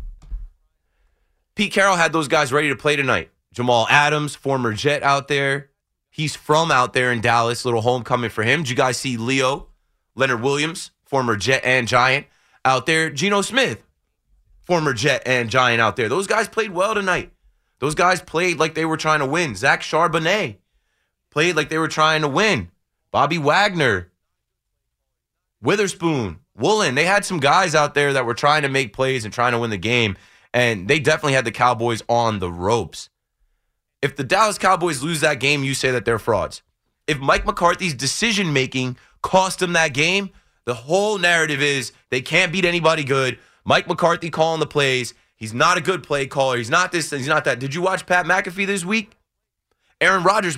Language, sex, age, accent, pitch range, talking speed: English, male, 20-39, American, 125-170 Hz, 185 wpm